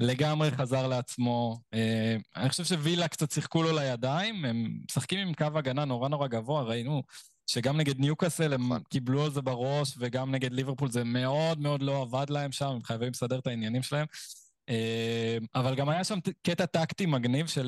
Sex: male